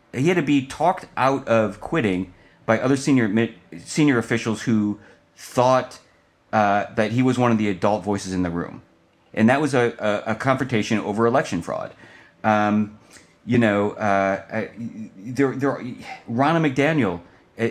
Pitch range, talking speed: 105-135 Hz, 155 wpm